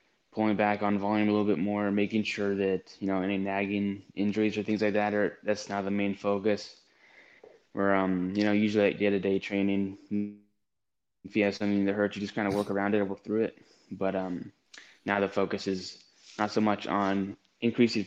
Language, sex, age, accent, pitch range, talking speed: English, male, 10-29, American, 100-105 Hz, 205 wpm